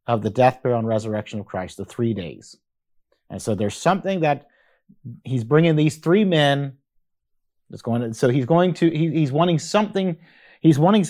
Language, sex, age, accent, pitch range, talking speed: English, male, 40-59, American, 125-165 Hz, 185 wpm